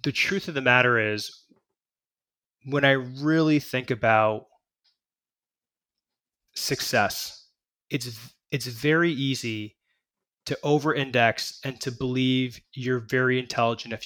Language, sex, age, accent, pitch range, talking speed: English, male, 20-39, American, 110-130 Hz, 105 wpm